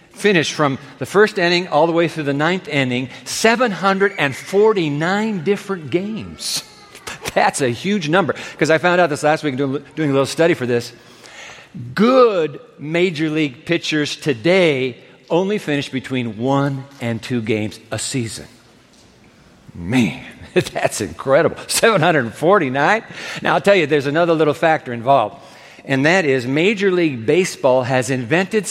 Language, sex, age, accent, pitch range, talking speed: English, male, 50-69, American, 135-175 Hz, 140 wpm